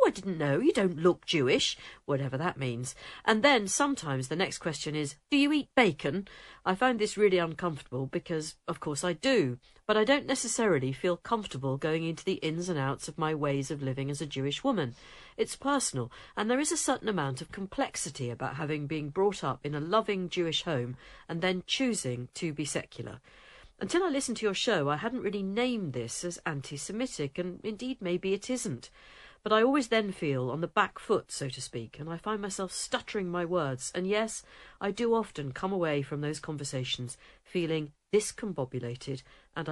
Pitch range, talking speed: 140-205 Hz, 195 wpm